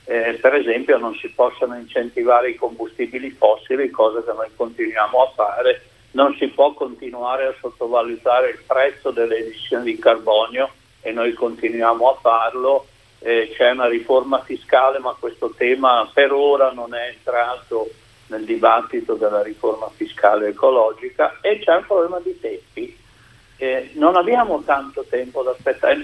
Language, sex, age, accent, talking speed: Italian, male, 60-79, native, 150 wpm